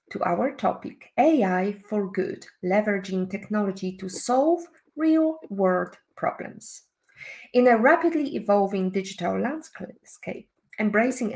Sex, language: female, English